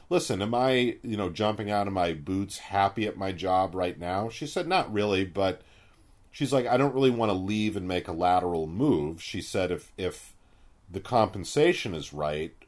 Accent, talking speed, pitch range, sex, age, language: American, 200 wpm, 90-125 Hz, male, 40-59, English